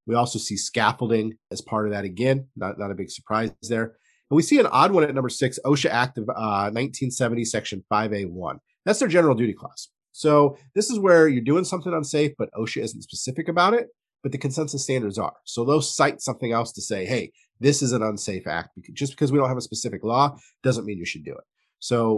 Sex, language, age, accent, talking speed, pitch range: male, English, 30-49, American, 225 wpm, 105-145 Hz